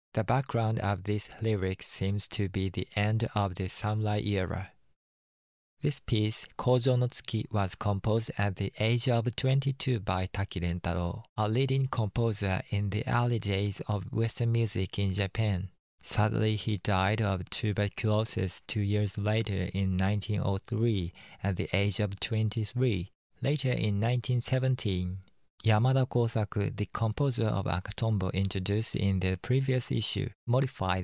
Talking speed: 135 wpm